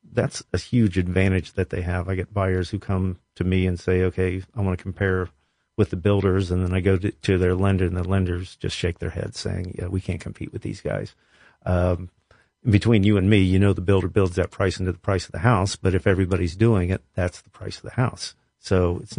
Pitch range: 90-105 Hz